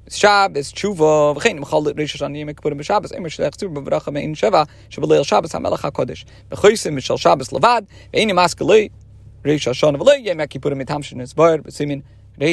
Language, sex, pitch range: English, male, 110-180 Hz